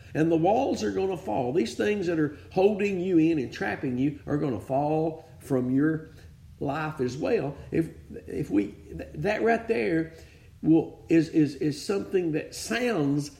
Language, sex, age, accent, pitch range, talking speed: English, male, 50-69, American, 130-170 Hz, 175 wpm